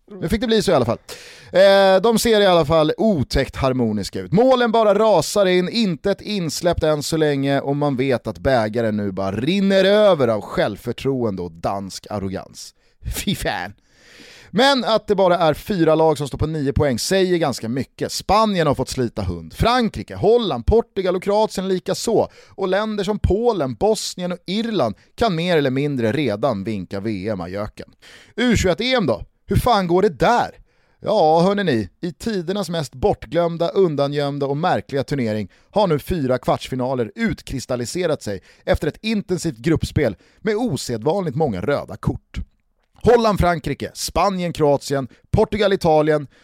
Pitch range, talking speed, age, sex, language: 125-195 Hz, 155 wpm, 30-49, male, Swedish